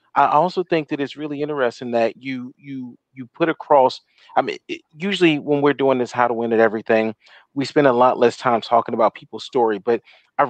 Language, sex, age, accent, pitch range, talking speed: English, male, 30-49, American, 115-145 Hz, 215 wpm